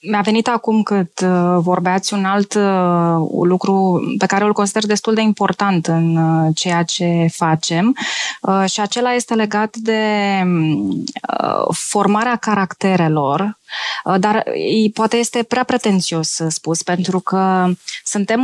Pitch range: 180-225 Hz